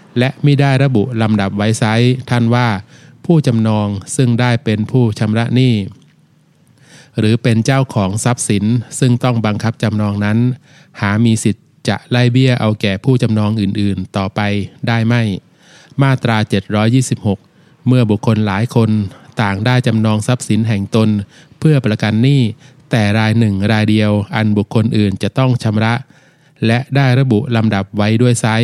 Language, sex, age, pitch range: Thai, male, 20-39, 105-130 Hz